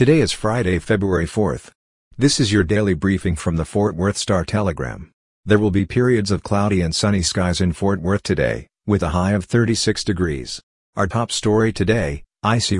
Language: English